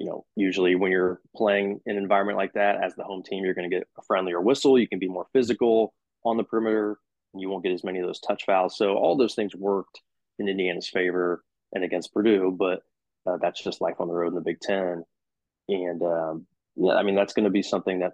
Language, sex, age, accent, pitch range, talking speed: English, male, 20-39, American, 90-100 Hz, 245 wpm